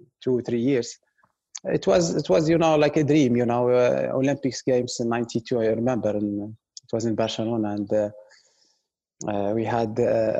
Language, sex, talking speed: English, male, 185 wpm